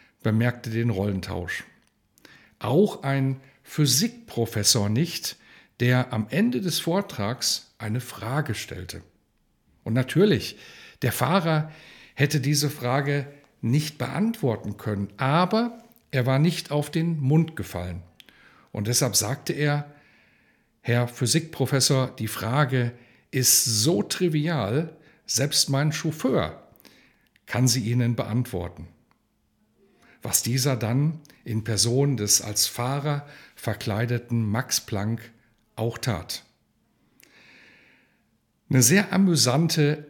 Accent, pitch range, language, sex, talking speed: German, 120-155 Hz, German, male, 100 wpm